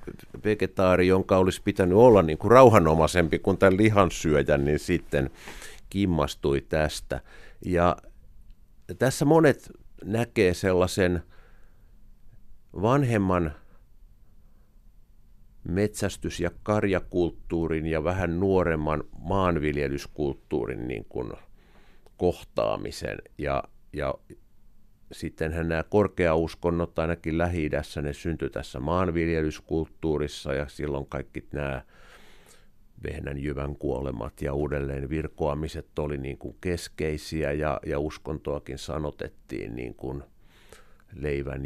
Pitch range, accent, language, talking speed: 75-100 Hz, native, Finnish, 90 wpm